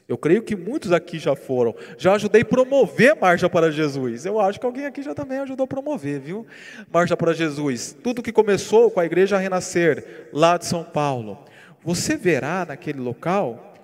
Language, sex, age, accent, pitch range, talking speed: Portuguese, male, 40-59, Brazilian, 165-215 Hz, 185 wpm